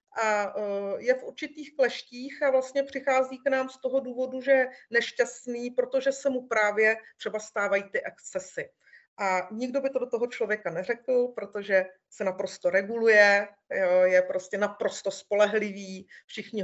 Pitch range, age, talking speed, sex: 200-270 Hz, 40-59, 150 wpm, female